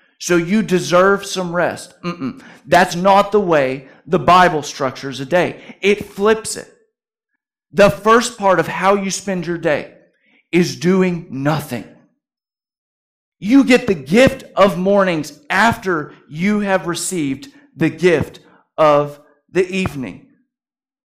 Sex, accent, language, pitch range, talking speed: male, American, English, 165-220 Hz, 130 wpm